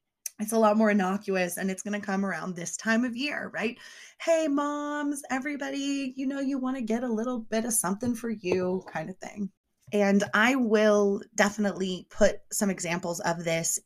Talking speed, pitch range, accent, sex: 190 wpm, 180-240 Hz, American, female